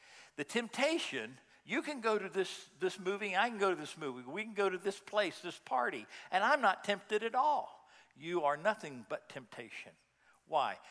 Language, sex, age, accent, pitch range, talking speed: English, male, 60-79, American, 185-235 Hz, 195 wpm